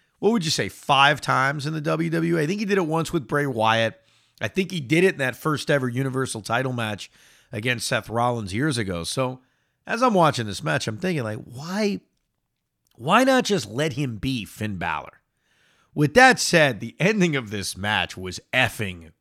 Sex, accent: male, American